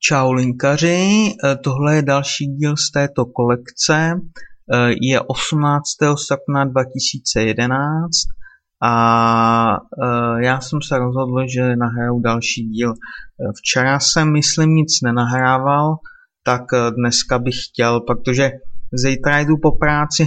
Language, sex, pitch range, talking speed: Czech, male, 120-150 Hz, 105 wpm